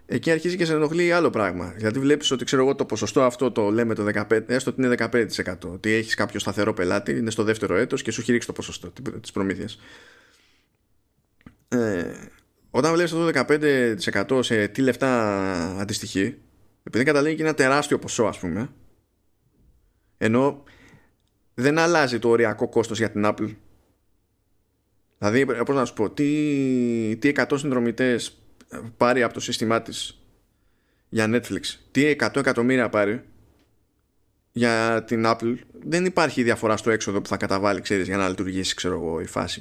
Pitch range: 100-135 Hz